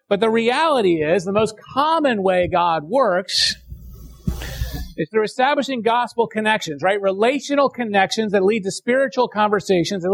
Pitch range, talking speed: 150-215 Hz, 140 wpm